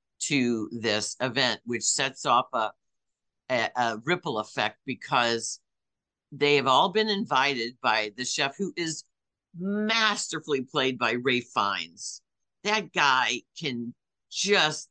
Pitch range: 120-160 Hz